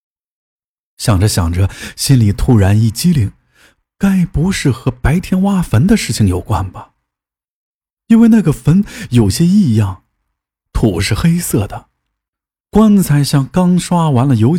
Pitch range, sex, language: 100-160 Hz, male, Chinese